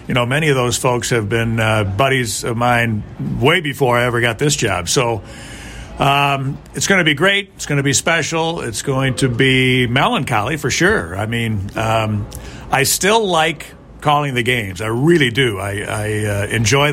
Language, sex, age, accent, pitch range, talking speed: English, male, 50-69, American, 120-145 Hz, 190 wpm